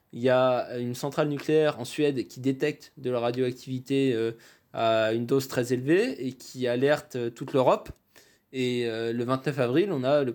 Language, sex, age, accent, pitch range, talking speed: French, male, 20-39, French, 120-150 Hz, 175 wpm